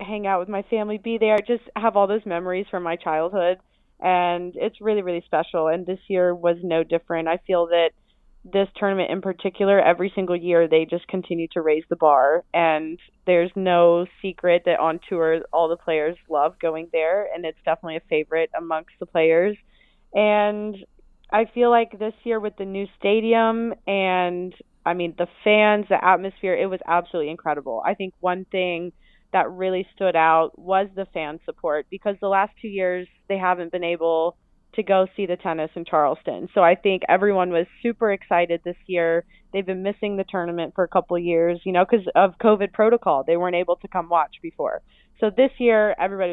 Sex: female